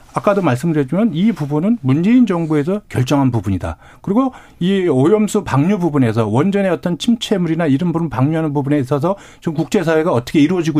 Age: 40-59